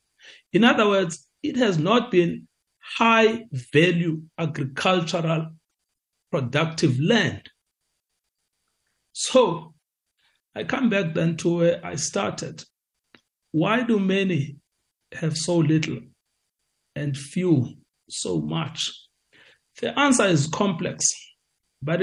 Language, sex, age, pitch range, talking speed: English, male, 60-79, 140-180 Hz, 100 wpm